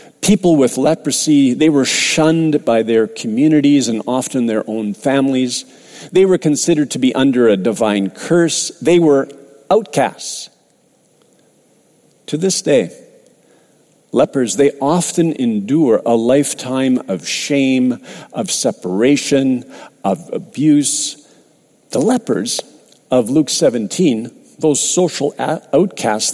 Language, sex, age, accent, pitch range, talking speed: English, male, 50-69, American, 135-190 Hz, 110 wpm